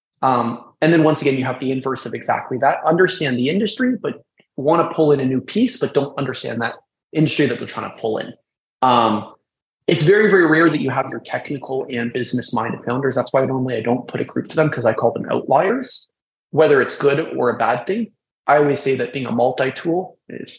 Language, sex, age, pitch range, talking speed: English, male, 20-39, 125-160 Hz, 225 wpm